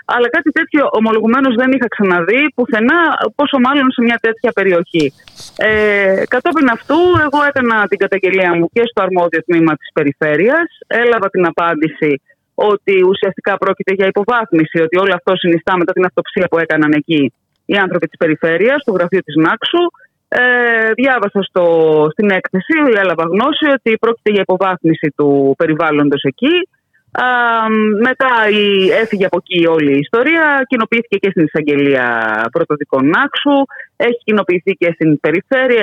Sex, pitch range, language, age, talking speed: female, 160-230 Hz, Greek, 20-39, 145 wpm